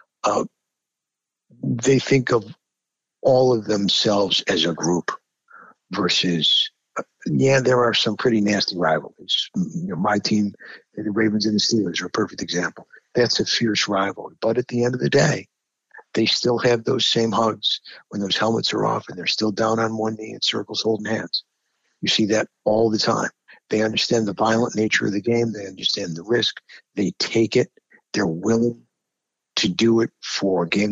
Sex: male